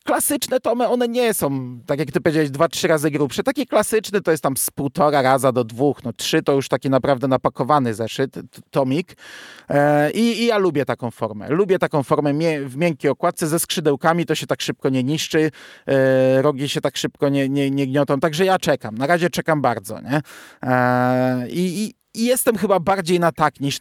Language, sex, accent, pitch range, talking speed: Polish, male, native, 135-175 Hz, 195 wpm